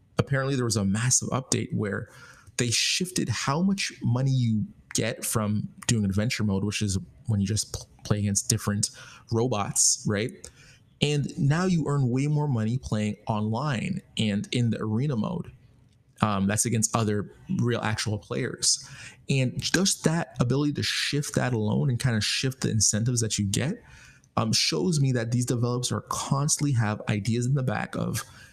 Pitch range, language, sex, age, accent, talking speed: 105-130 Hz, English, male, 20-39, American, 170 wpm